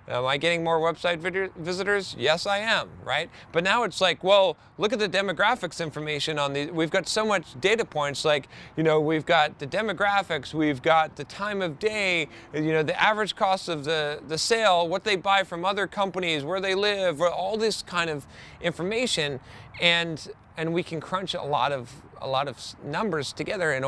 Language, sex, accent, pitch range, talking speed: English, male, American, 140-190 Hz, 195 wpm